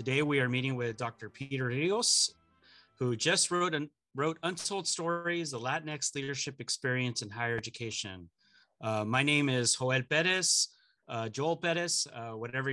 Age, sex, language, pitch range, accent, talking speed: 30-49, male, English, 125-160 Hz, American, 155 wpm